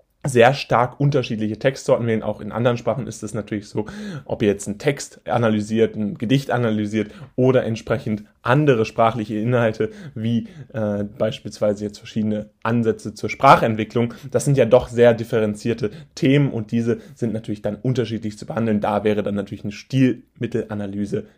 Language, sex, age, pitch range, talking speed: German, male, 10-29, 110-140 Hz, 155 wpm